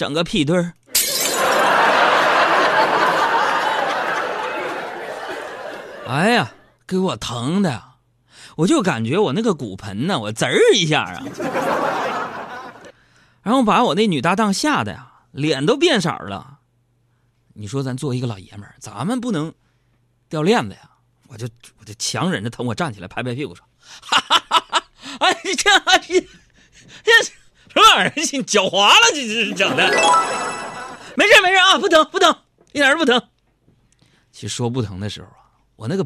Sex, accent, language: male, native, Chinese